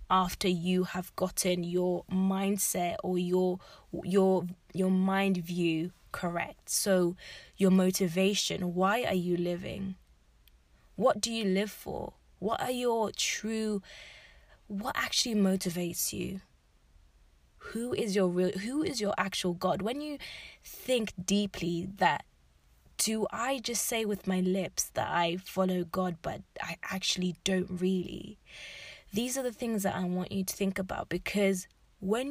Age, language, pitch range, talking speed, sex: 20-39, English, 180-200 Hz, 140 wpm, female